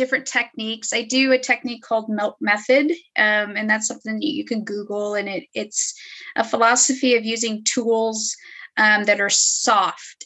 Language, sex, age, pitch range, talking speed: English, female, 30-49, 200-240 Hz, 170 wpm